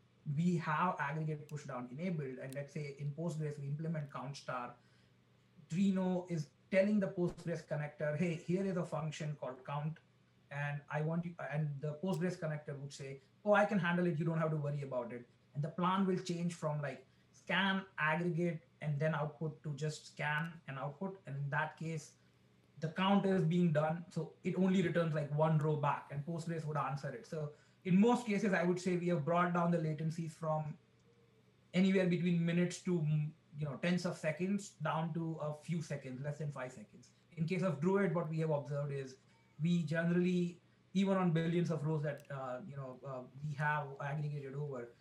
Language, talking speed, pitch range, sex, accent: English, 195 wpm, 145-175 Hz, male, Indian